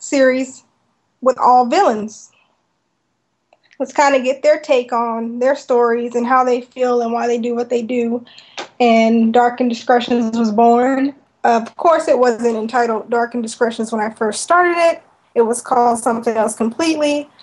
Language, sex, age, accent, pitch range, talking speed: English, female, 10-29, American, 235-275 Hz, 165 wpm